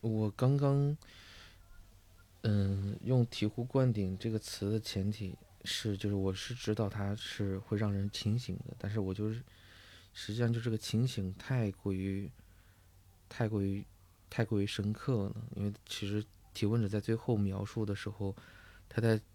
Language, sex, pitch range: Chinese, male, 95-110 Hz